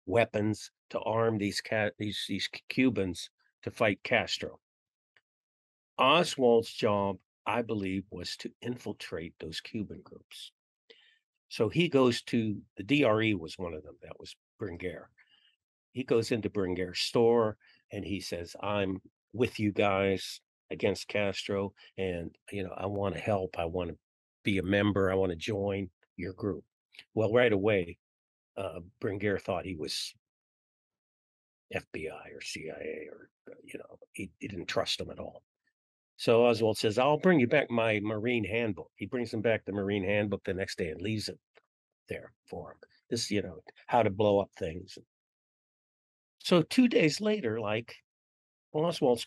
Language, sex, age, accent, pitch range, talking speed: English, male, 50-69, American, 95-125 Hz, 155 wpm